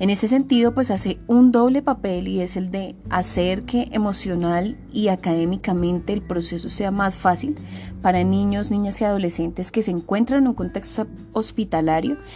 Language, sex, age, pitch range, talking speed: Spanish, female, 20-39, 175-220 Hz, 165 wpm